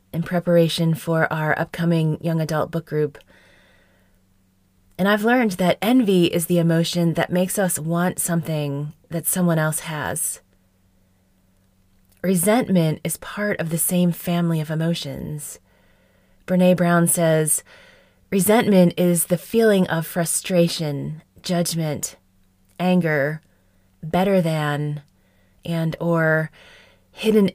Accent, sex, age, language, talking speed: American, female, 20-39, English, 110 wpm